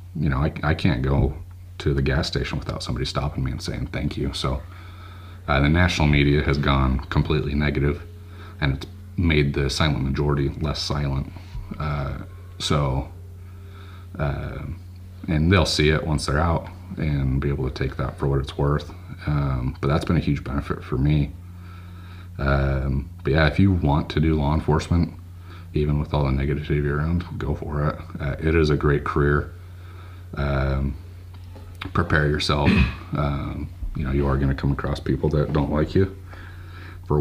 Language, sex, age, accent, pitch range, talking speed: English, male, 30-49, American, 70-90 Hz, 175 wpm